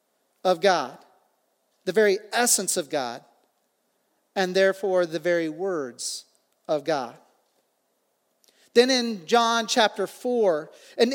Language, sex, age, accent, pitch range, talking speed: English, male, 40-59, American, 210-255 Hz, 110 wpm